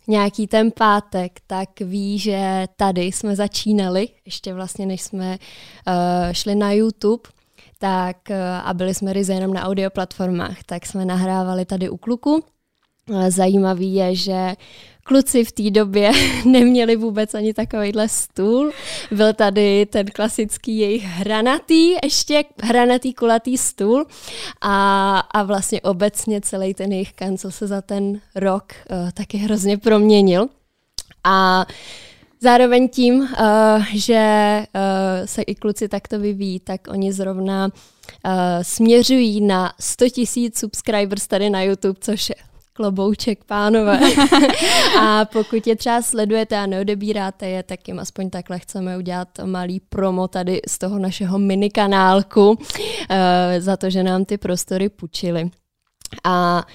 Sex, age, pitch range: female, 20-39, 190-215 Hz